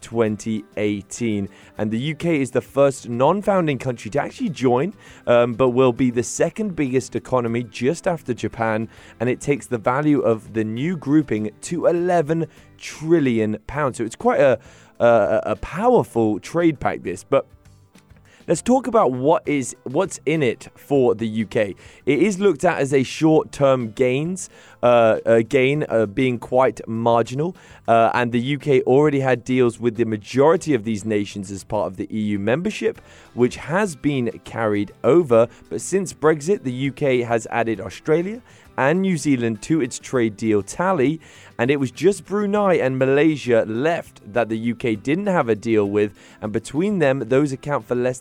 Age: 20-39